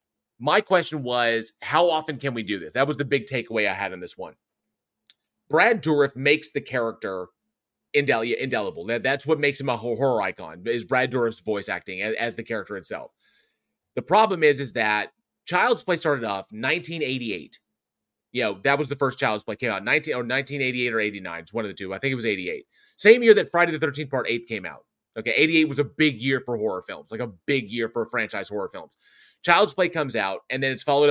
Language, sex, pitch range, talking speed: English, male, 115-155 Hz, 215 wpm